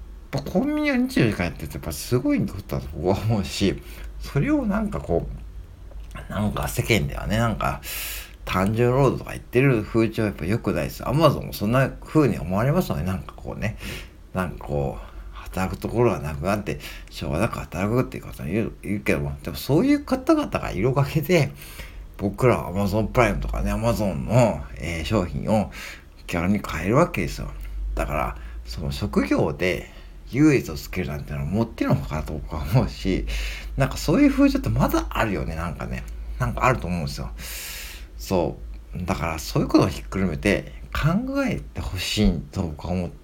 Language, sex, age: Japanese, male, 50-69